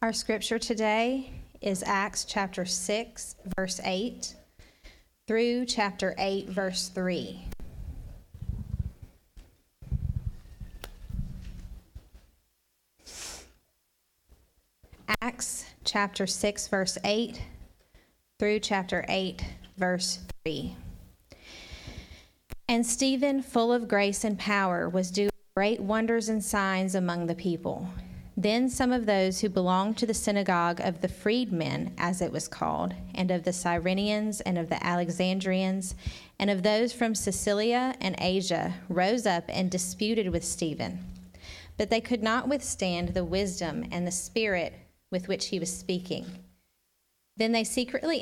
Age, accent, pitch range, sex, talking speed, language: 30-49, American, 140-210 Hz, female, 120 wpm, English